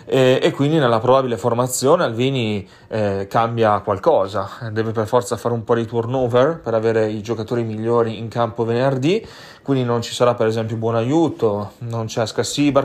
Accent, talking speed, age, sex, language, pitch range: native, 175 wpm, 30-49, male, Italian, 110-135 Hz